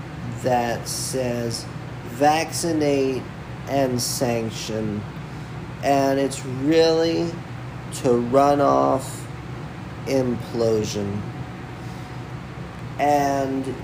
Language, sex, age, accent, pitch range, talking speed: English, male, 40-59, American, 125-150 Hz, 55 wpm